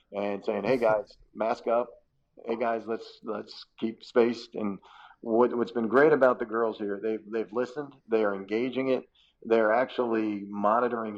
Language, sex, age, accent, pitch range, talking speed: English, male, 40-59, American, 105-120 Hz, 165 wpm